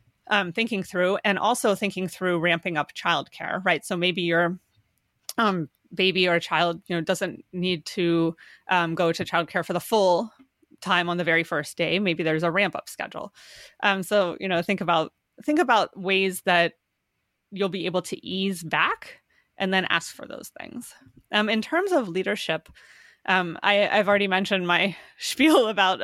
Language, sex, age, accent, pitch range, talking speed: English, female, 30-49, American, 170-205 Hz, 180 wpm